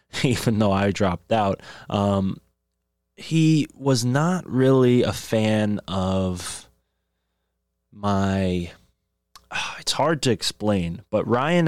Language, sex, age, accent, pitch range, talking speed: English, male, 20-39, American, 90-110 Hz, 110 wpm